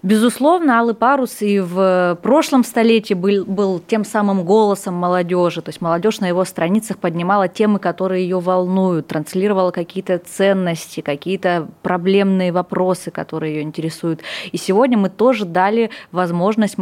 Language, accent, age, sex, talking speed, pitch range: Russian, native, 20-39, female, 140 wpm, 170-205 Hz